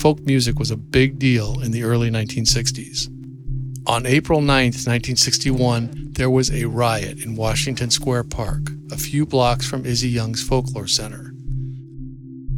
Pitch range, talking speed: 110-135 Hz, 145 wpm